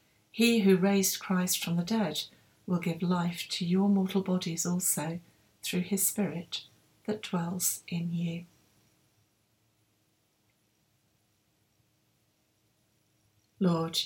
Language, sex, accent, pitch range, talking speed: English, female, British, 145-195 Hz, 100 wpm